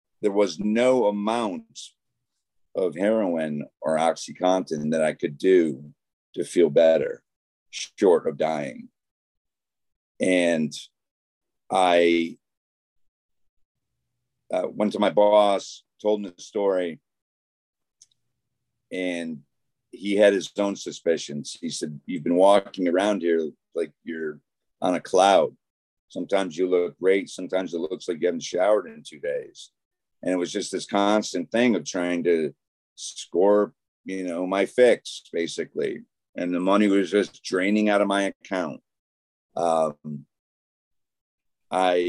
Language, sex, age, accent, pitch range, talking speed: English, male, 50-69, American, 80-100 Hz, 125 wpm